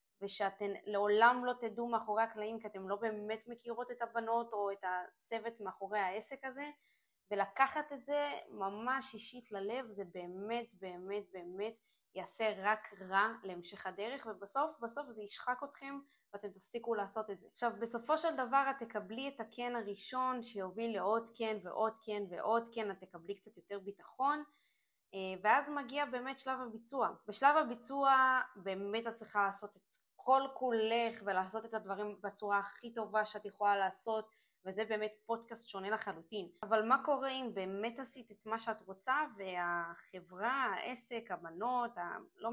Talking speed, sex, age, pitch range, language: 150 wpm, female, 20-39, 200-240 Hz, Hebrew